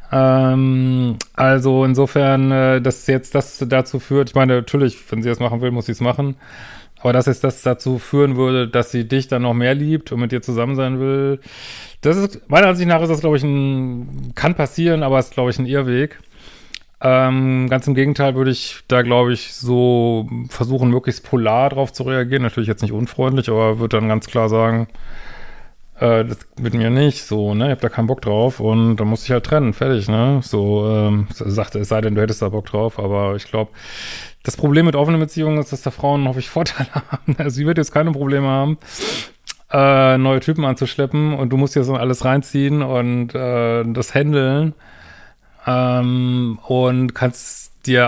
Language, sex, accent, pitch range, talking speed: German, male, German, 115-135 Hz, 195 wpm